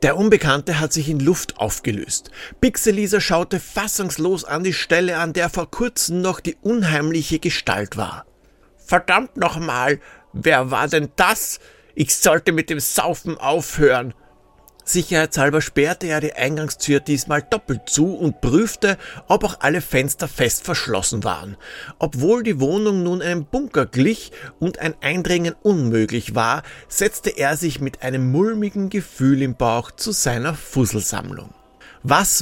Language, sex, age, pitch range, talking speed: German, male, 50-69, 145-190 Hz, 140 wpm